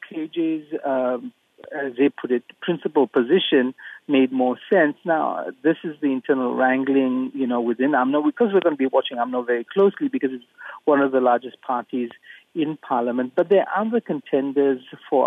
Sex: male